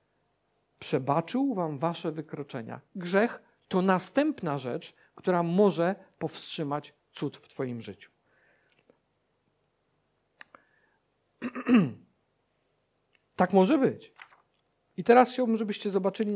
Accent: native